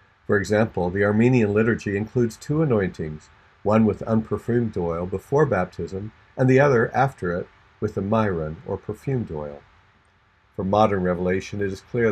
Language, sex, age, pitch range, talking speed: English, male, 50-69, 95-115 Hz, 155 wpm